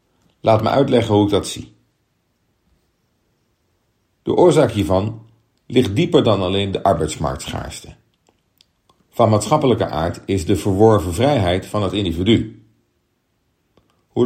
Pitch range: 95-120 Hz